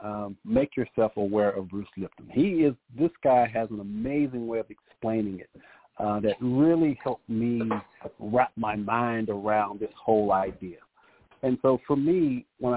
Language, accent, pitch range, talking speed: English, American, 110-135 Hz, 165 wpm